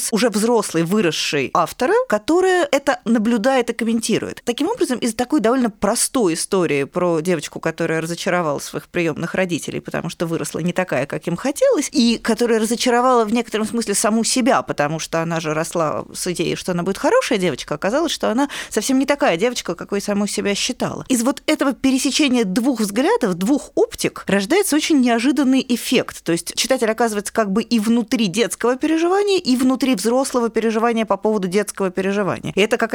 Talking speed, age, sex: 175 wpm, 20-39, female